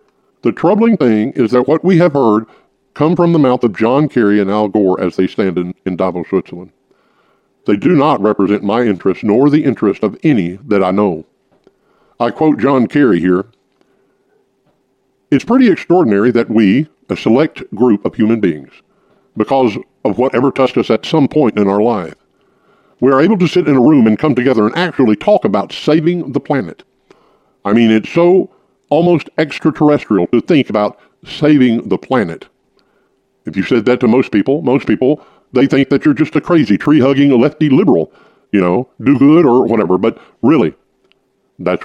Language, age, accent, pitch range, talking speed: English, 50-69, American, 105-150 Hz, 180 wpm